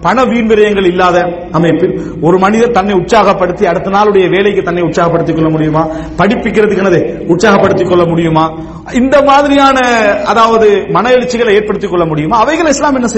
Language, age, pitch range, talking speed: English, 40-59, 175-230 Hz, 75 wpm